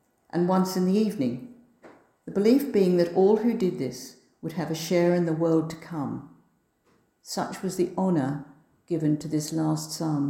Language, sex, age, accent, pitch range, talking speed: English, female, 60-79, British, 155-195 Hz, 180 wpm